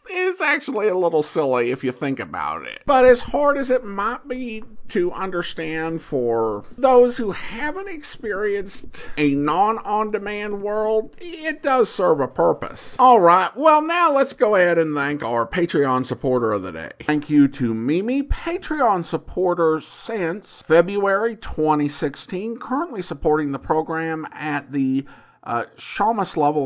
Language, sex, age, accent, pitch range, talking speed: English, male, 50-69, American, 150-250 Hz, 145 wpm